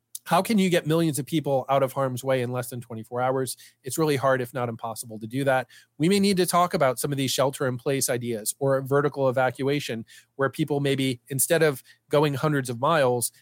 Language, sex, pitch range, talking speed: English, male, 130-160 Hz, 220 wpm